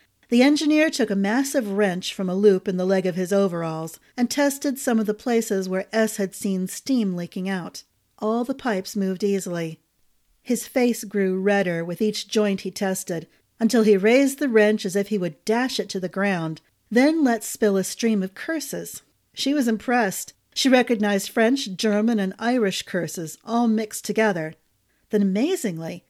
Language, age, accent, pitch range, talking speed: English, 40-59, American, 195-245 Hz, 180 wpm